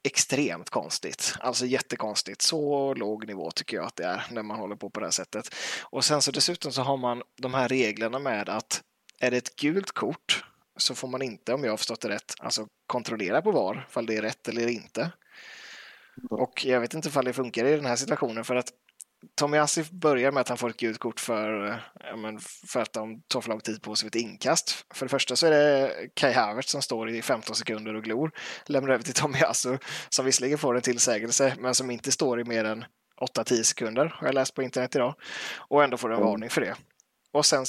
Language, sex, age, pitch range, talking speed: Swedish, male, 20-39, 115-145 Hz, 225 wpm